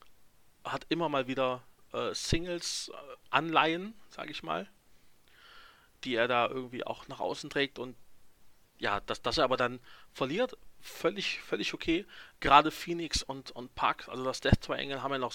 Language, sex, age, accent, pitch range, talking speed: German, male, 40-59, German, 120-150 Hz, 170 wpm